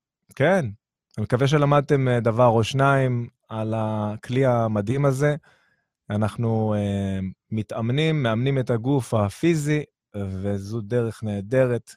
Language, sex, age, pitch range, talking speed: Hebrew, male, 20-39, 110-135 Hz, 100 wpm